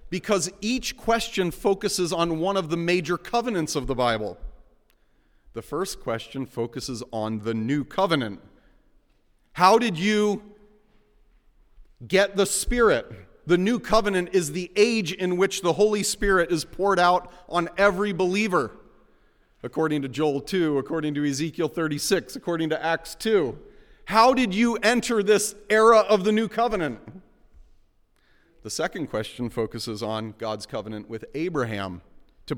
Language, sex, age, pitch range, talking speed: English, male, 40-59, 130-195 Hz, 140 wpm